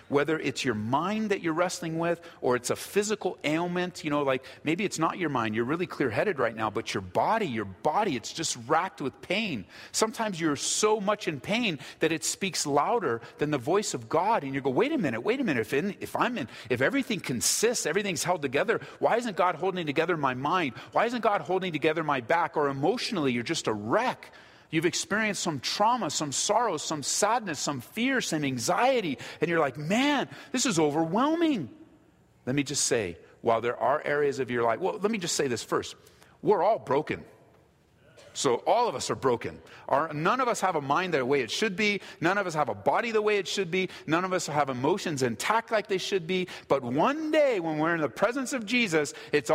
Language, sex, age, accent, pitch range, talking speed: English, male, 40-59, American, 145-205 Hz, 220 wpm